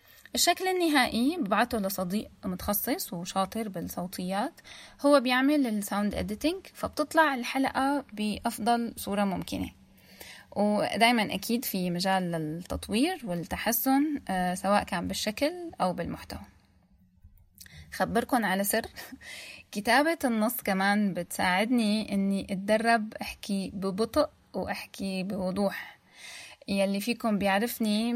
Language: Arabic